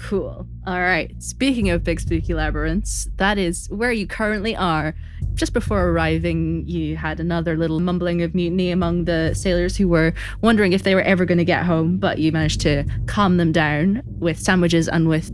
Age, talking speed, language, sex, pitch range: 20-39, 190 wpm, English, female, 115-185 Hz